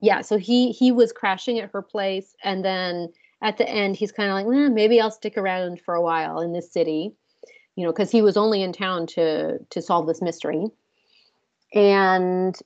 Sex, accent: female, American